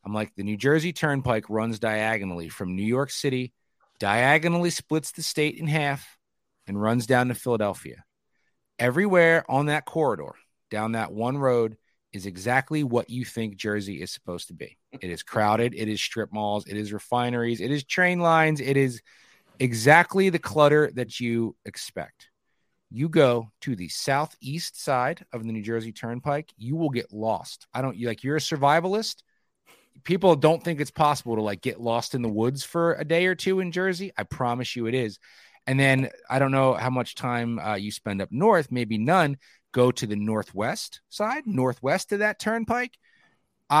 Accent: American